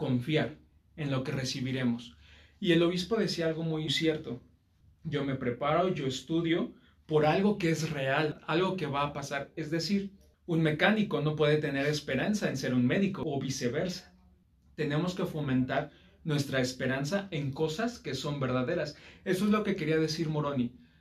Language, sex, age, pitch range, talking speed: Spanish, male, 40-59, 130-160 Hz, 165 wpm